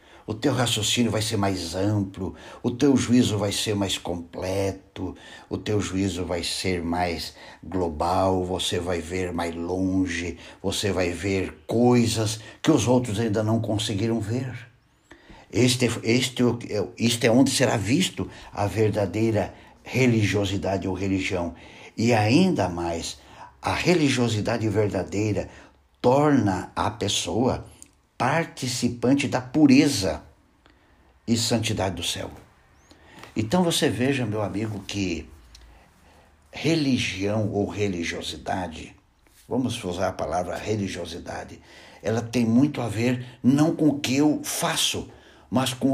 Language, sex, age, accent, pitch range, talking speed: Portuguese, male, 60-79, Brazilian, 95-120 Hz, 120 wpm